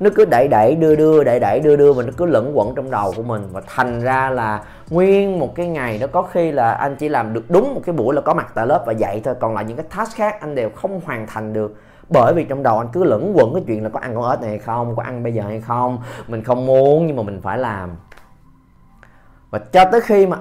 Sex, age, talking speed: male, 20-39, 280 wpm